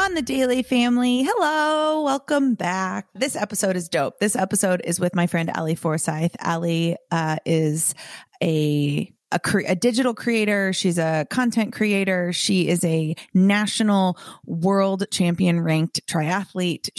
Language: English